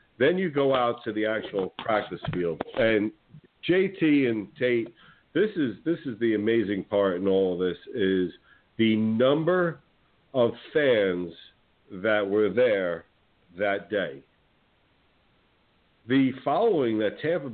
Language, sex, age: English, male, 50-69